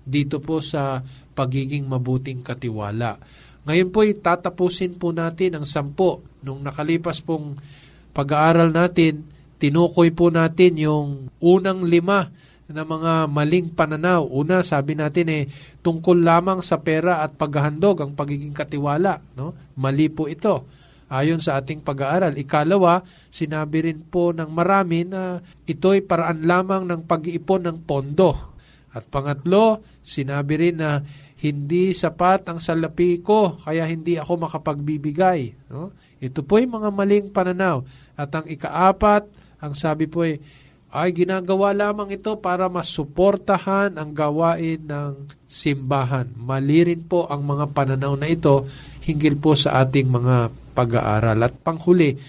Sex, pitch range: male, 140-175 Hz